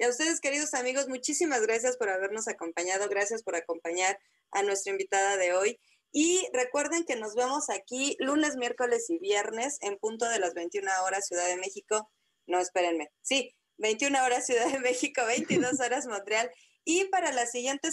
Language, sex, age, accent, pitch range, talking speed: Spanish, female, 20-39, Mexican, 190-275 Hz, 175 wpm